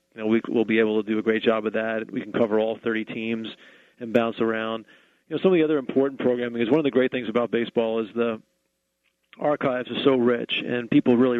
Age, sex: 40-59, male